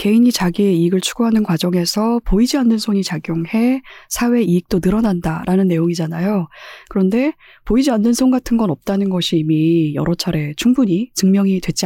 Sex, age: female, 20-39